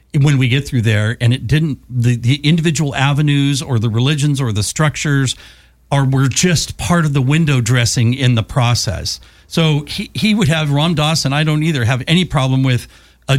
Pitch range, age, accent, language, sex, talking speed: 125-165 Hz, 50-69, American, English, male, 200 wpm